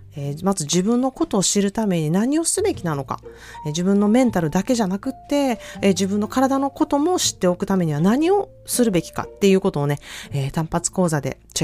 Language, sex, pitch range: Japanese, female, 155-225 Hz